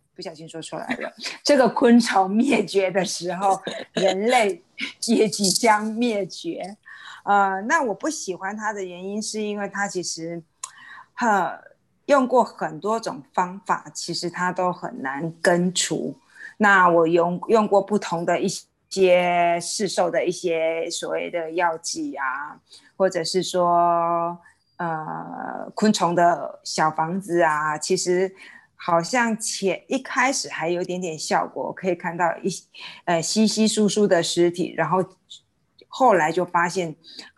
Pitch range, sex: 170-200 Hz, female